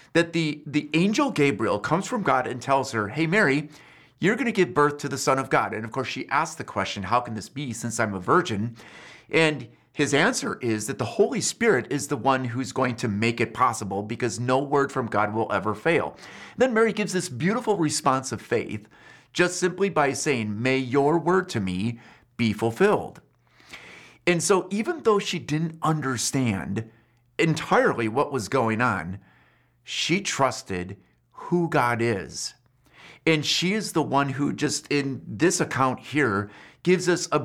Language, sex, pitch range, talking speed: English, male, 115-160 Hz, 185 wpm